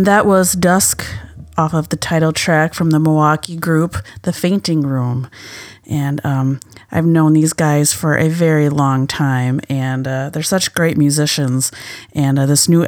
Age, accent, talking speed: 30-49, American, 170 wpm